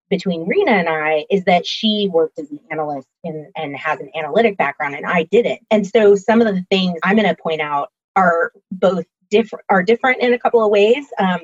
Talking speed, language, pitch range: 225 wpm, English, 160-215 Hz